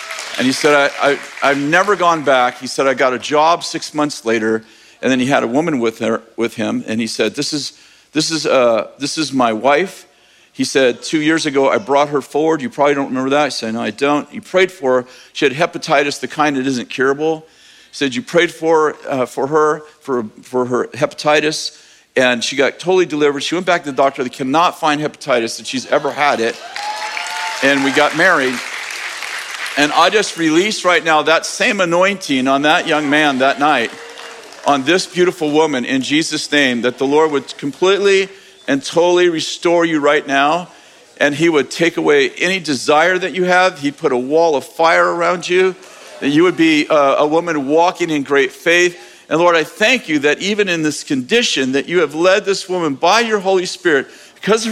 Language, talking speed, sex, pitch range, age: English, 210 wpm, male, 140-180 Hz, 50-69